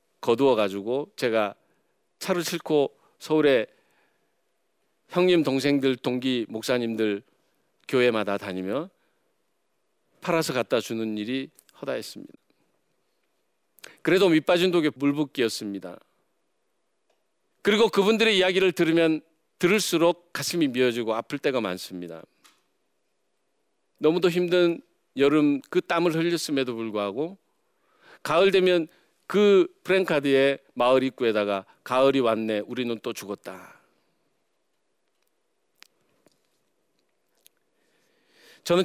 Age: 40-59